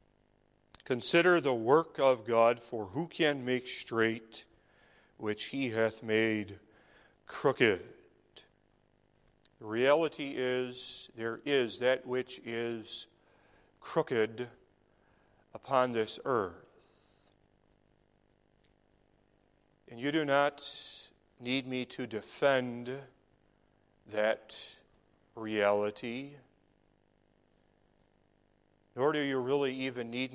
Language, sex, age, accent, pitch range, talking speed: English, male, 40-59, American, 115-135 Hz, 85 wpm